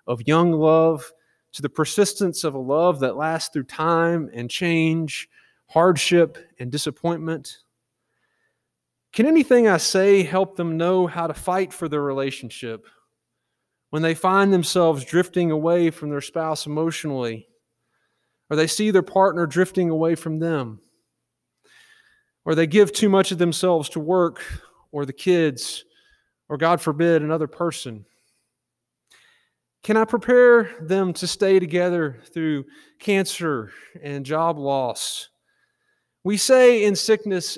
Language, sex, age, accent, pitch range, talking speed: English, male, 30-49, American, 155-190 Hz, 135 wpm